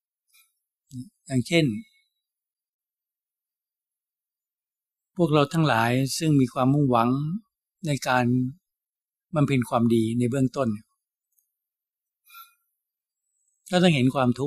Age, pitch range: 60-79, 120-155 Hz